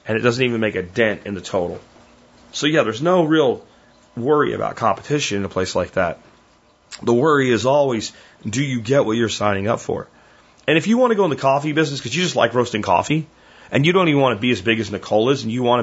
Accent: American